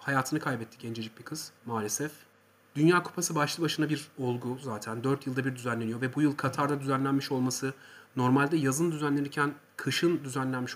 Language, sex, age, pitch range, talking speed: Turkish, male, 40-59, 130-175 Hz, 155 wpm